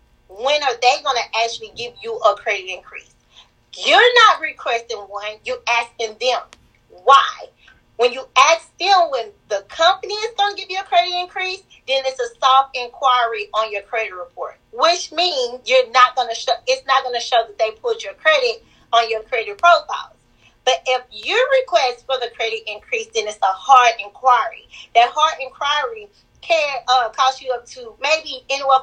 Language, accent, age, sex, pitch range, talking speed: English, American, 30-49, female, 230-335 Hz, 185 wpm